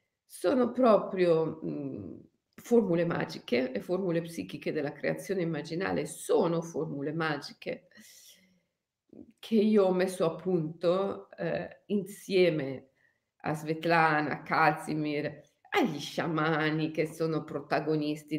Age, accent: 40-59, native